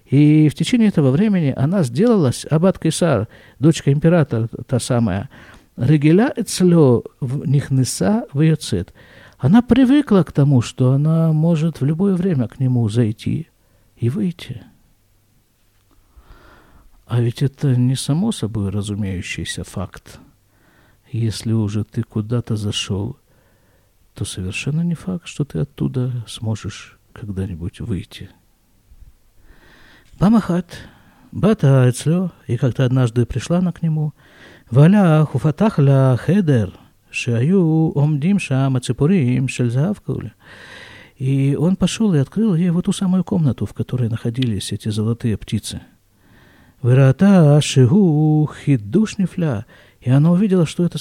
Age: 50-69